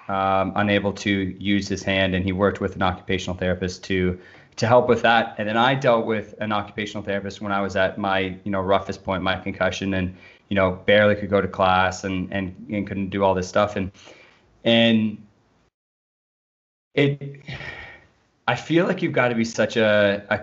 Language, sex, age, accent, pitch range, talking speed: English, male, 20-39, American, 95-115 Hz, 195 wpm